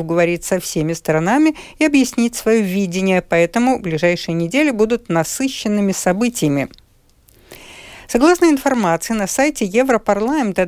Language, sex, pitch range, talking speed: Russian, female, 175-240 Hz, 110 wpm